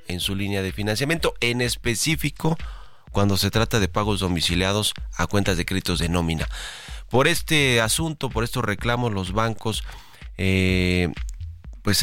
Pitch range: 85-110 Hz